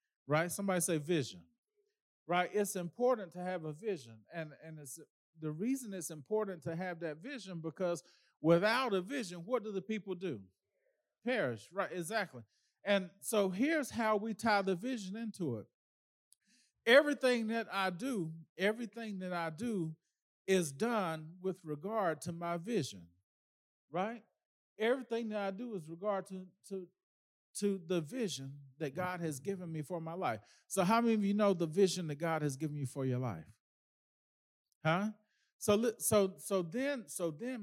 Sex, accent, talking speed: male, American, 165 wpm